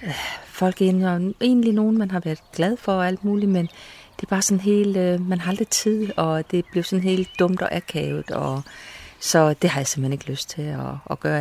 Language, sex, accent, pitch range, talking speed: Danish, female, native, 155-195 Hz, 225 wpm